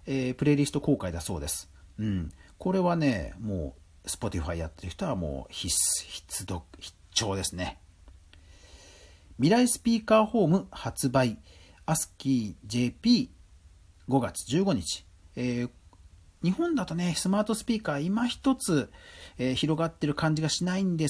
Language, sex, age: Japanese, male, 40-59